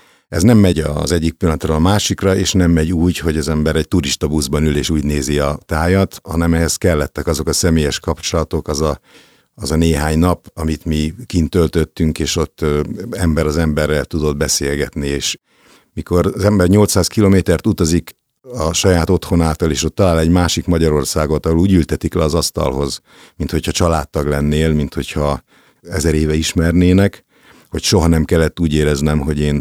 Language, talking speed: Hungarian, 170 wpm